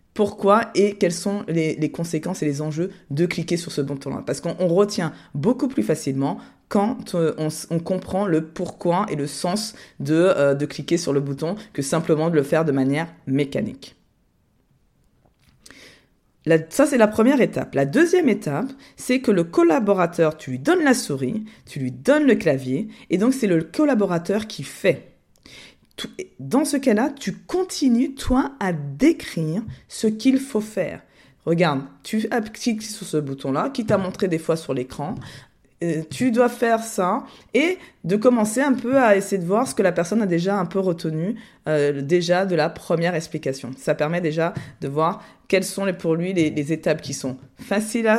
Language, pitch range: French, 155-220 Hz